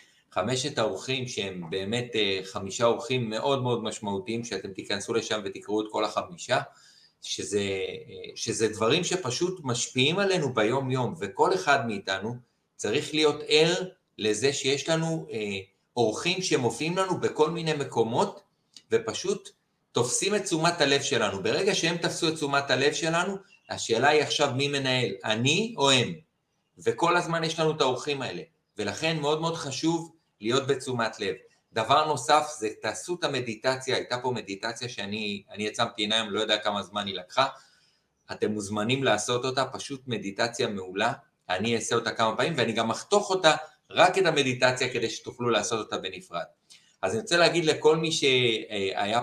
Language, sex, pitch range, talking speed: Hebrew, male, 110-155 Hz, 150 wpm